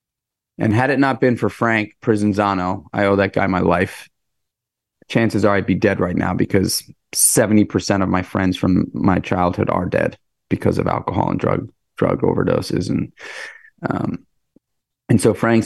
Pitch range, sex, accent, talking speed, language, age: 95-115 Hz, male, American, 165 wpm, English, 30-49